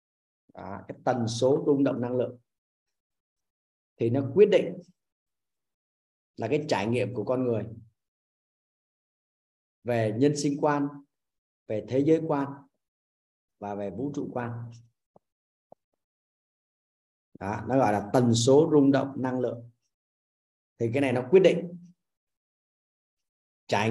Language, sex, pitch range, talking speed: Vietnamese, male, 115-150 Hz, 115 wpm